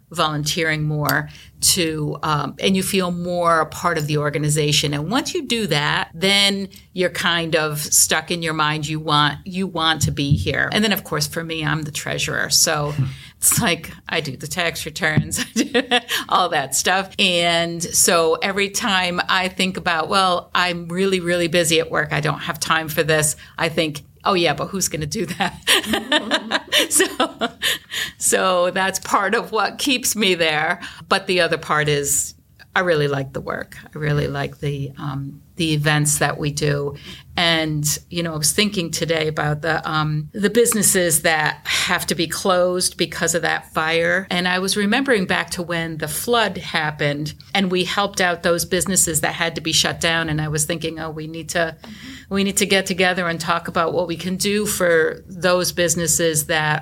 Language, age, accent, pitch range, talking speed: English, 50-69, American, 155-185 Hz, 190 wpm